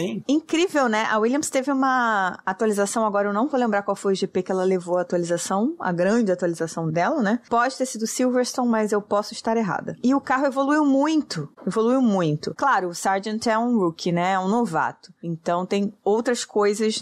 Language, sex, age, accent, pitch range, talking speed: Portuguese, female, 20-39, Brazilian, 175-245 Hz, 200 wpm